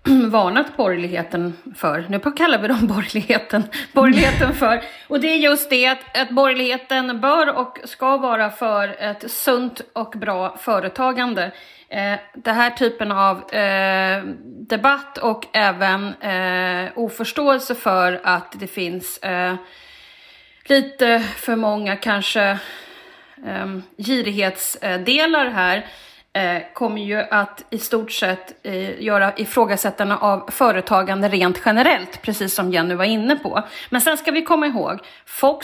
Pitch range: 190-255 Hz